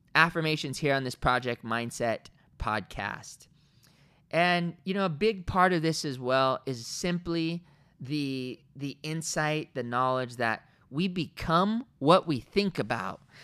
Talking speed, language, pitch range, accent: 140 wpm, English, 145-200 Hz, American